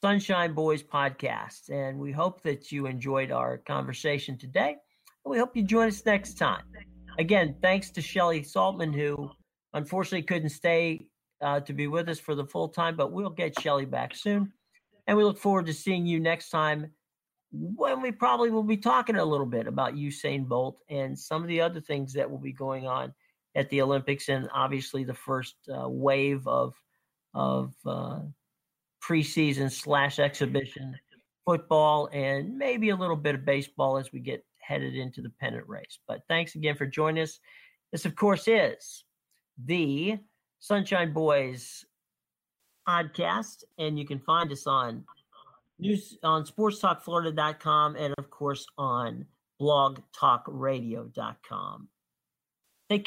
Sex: male